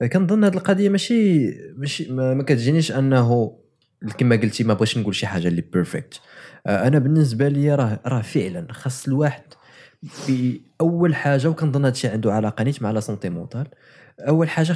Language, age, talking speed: Arabic, 20-39, 150 wpm